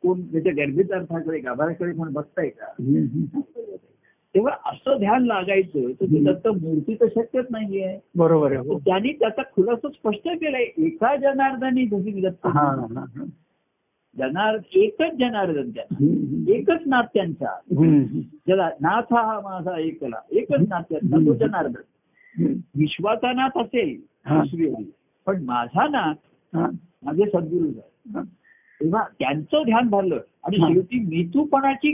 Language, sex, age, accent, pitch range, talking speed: Marathi, male, 60-79, native, 160-250 Hz, 90 wpm